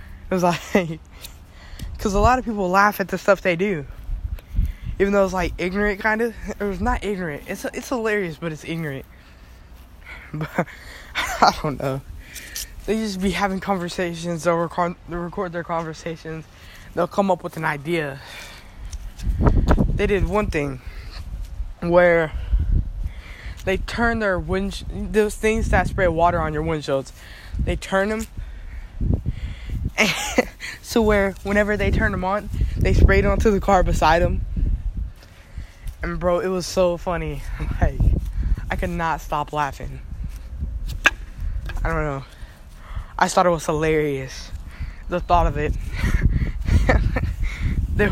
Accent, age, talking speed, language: American, 10-29, 140 wpm, English